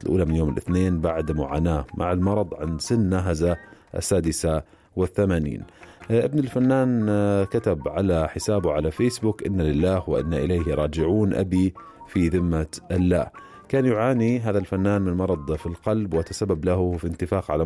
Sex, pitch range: male, 80-105 Hz